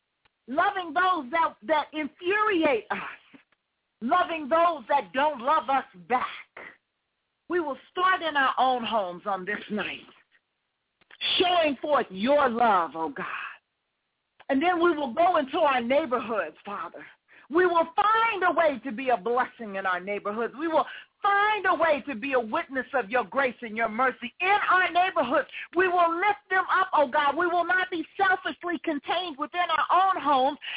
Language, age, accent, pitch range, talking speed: English, 40-59, American, 270-360 Hz, 165 wpm